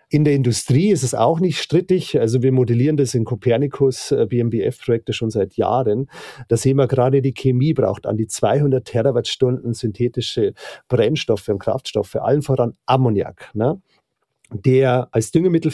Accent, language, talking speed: German, German, 155 wpm